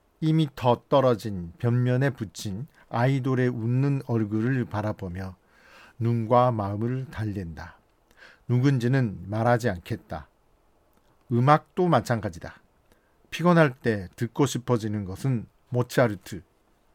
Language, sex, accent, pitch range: Korean, male, native, 105-135 Hz